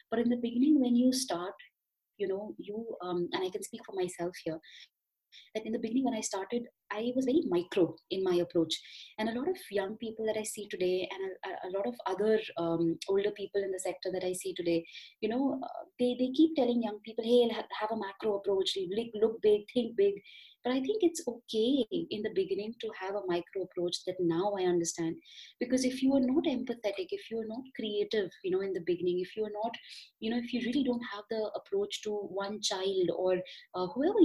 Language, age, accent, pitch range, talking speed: English, 20-39, Indian, 185-255 Hz, 225 wpm